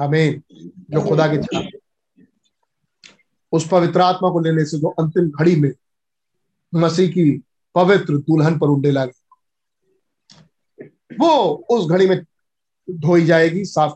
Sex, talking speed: male, 115 wpm